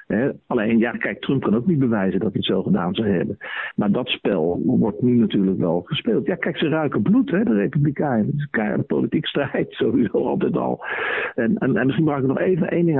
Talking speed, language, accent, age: 235 wpm, Dutch, Dutch, 50-69